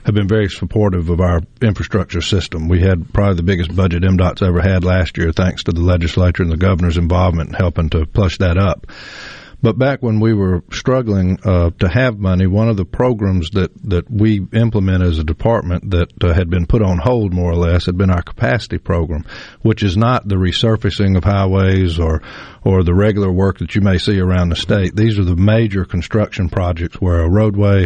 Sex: male